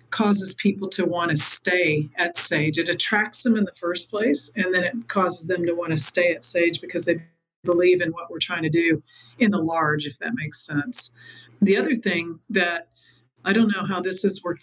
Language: English